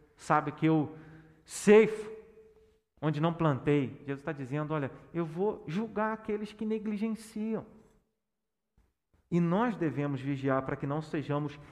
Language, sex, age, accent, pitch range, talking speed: Portuguese, male, 40-59, Brazilian, 140-215 Hz, 130 wpm